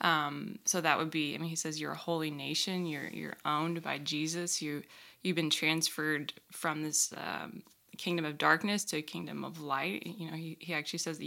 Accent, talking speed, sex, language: American, 215 wpm, female, English